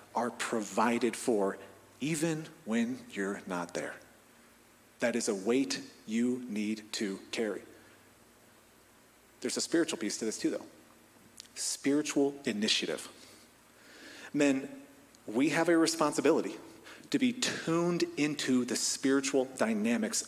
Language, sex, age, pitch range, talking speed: English, male, 40-59, 125-190 Hz, 110 wpm